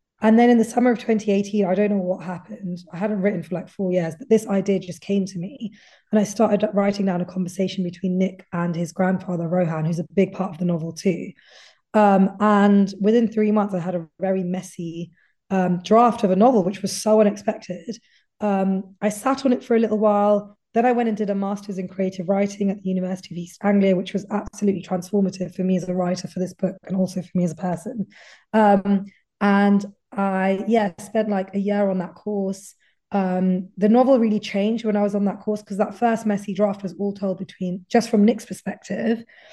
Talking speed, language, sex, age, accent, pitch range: 220 wpm, English, female, 20-39, British, 185-210 Hz